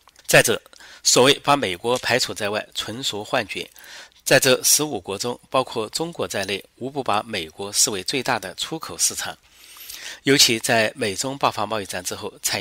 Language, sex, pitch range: Chinese, male, 100-140 Hz